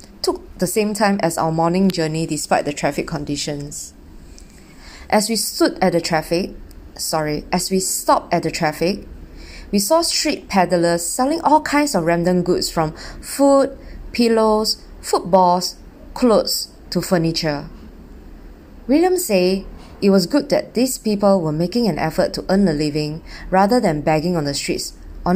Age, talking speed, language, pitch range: 20-39, 155 wpm, English, 155-205 Hz